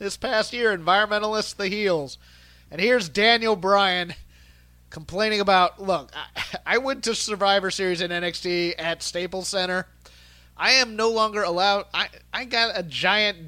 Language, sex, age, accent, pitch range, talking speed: English, male, 30-49, American, 160-210 Hz, 150 wpm